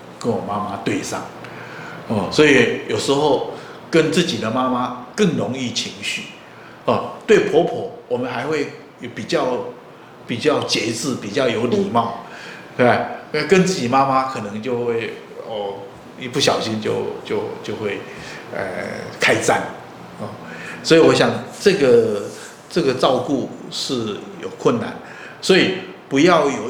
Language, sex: Chinese, male